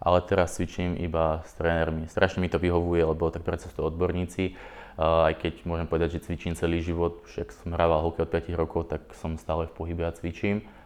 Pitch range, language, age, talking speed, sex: 80-90 Hz, Slovak, 20-39, 205 wpm, male